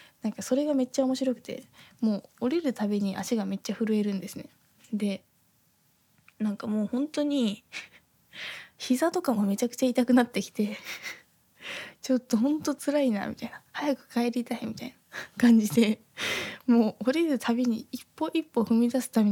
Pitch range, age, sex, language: 210-265 Hz, 20-39, female, Japanese